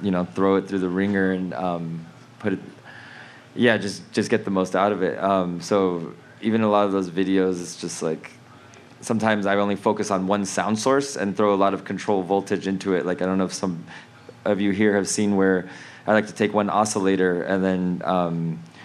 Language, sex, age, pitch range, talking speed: English, male, 20-39, 95-110 Hz, 220 wpm